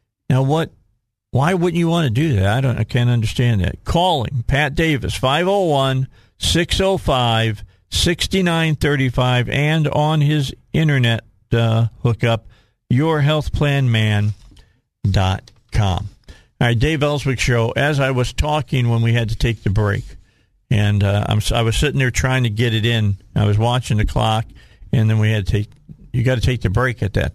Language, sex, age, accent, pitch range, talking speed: English, male, 50-69, American, 105-135 Hz, 160 wpm